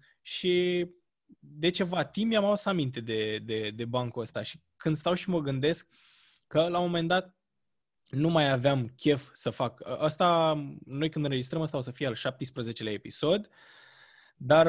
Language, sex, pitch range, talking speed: Romanian, male, 135-180 Hz, 165 wpm